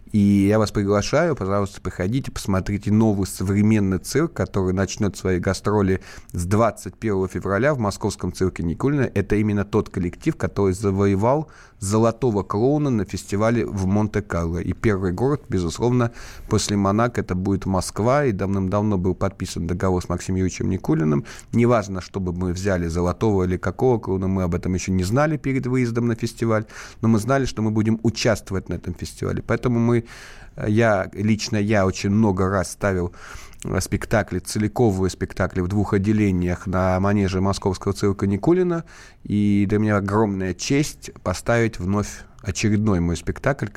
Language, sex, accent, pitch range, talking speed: Russian, male, native, 95-110 Hz, 150 wpm